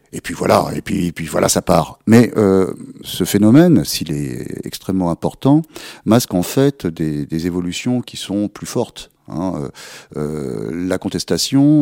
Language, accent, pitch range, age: French, French, 85-110 Hz, 40-59